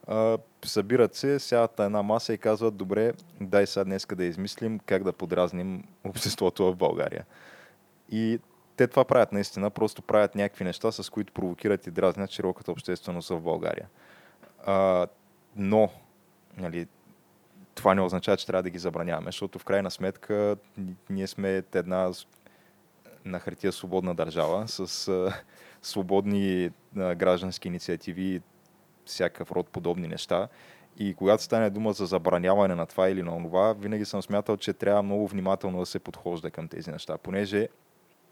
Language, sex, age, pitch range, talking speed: Bulgarian, male, 20-39, 90-105 Hz, 150 wpm